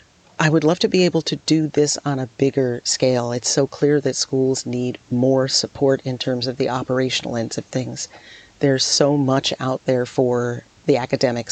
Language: English